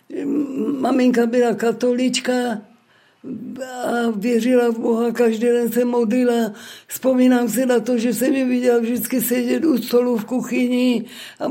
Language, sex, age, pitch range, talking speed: Czech, female, 50-69, 230-250 Hz, 135 wpm